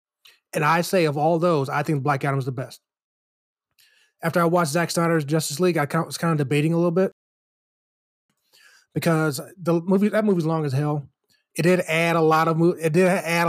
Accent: American